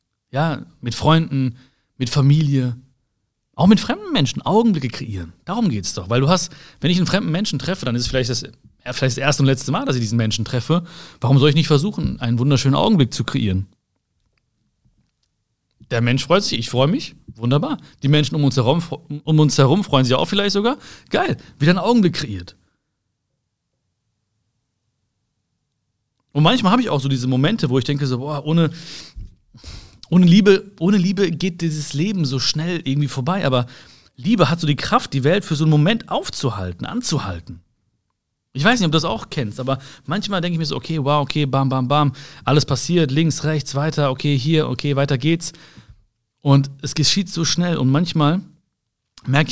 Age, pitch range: 40-59, 120-160 Hz